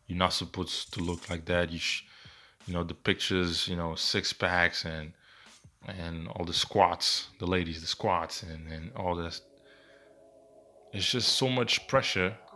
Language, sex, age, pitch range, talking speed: English, male, 20-39, 85-100 Hz, 165 wpm